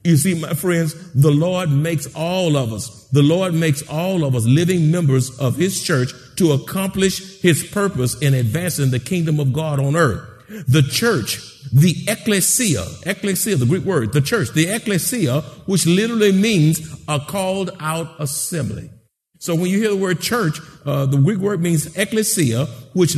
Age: 50-69